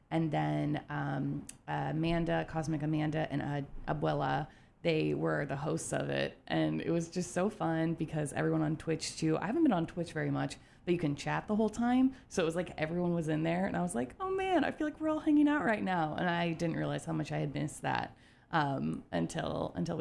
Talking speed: 230 wpm